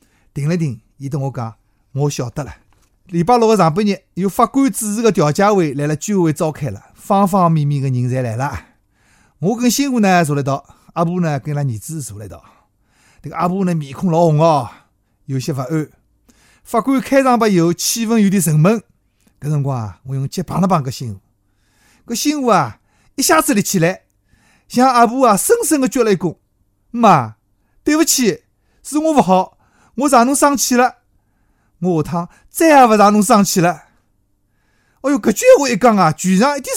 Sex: male